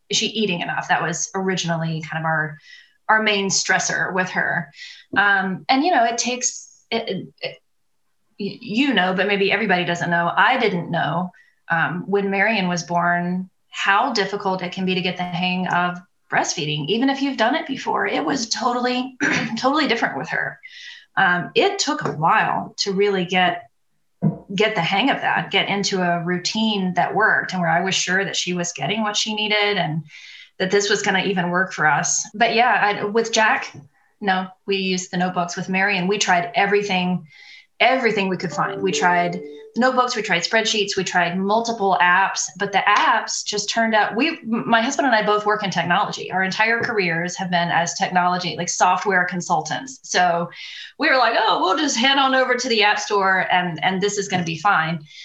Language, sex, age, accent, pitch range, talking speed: English, female, 20-39, American, 180-220 Hz, 195 wpm